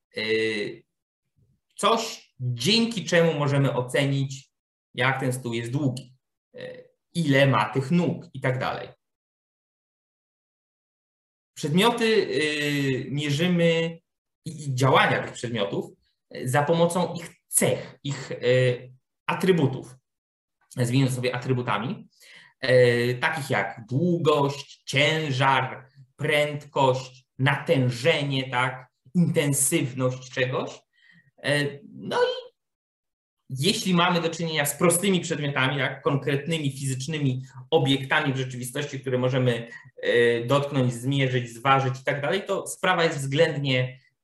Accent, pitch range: native, 125-160 Hz